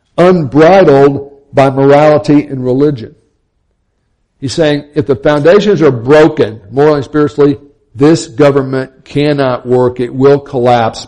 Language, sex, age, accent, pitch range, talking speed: English, male, 60-79, American, 120-155 Hz, 120 wpm